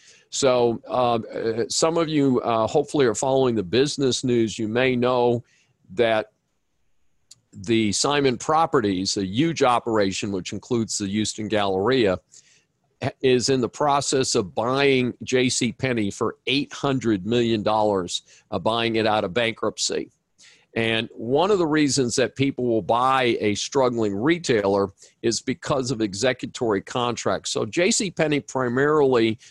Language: English